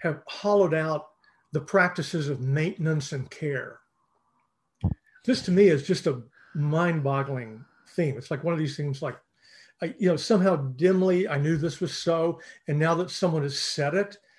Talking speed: 170 wpm